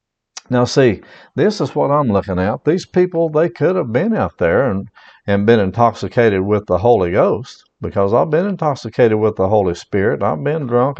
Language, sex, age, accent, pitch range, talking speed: English, male, 50-69, American, 110-130 Hz, 190 wpm